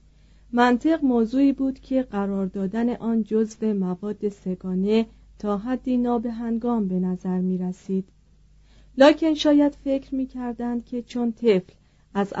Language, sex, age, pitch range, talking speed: Persian, female, 40-59, 195-235 Hz, 120 wpm